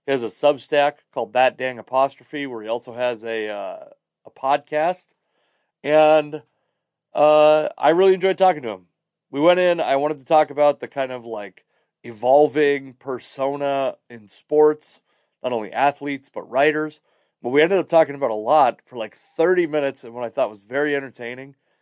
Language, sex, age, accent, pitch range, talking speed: English, male, 30-49, American, 120-155 Hz, 175 wpm